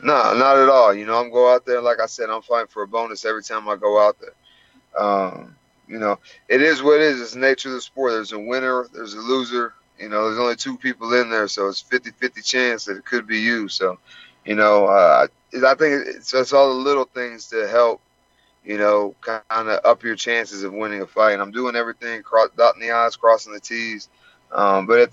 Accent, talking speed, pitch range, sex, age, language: American, 240 wpm, 110-125 Hz, male, 30-49, English